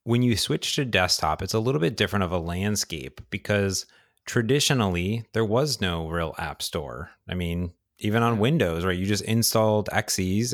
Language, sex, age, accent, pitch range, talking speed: English, male, 30-49, American, 90-110 Hz, 175 wpm